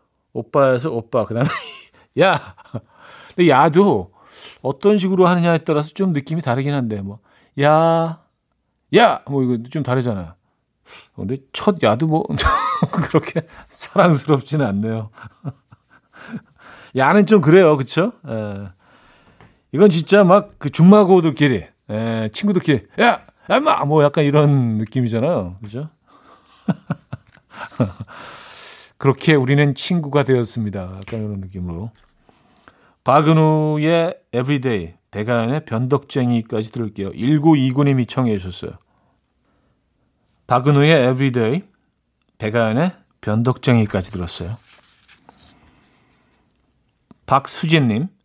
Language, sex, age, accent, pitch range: Korean, male, 40-59, native, 115-160 Hz